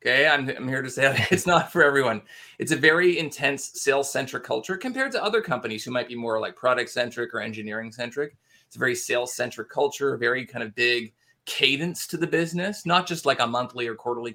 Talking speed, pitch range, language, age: 200 wpm, 120-150 Hz, English, 30-49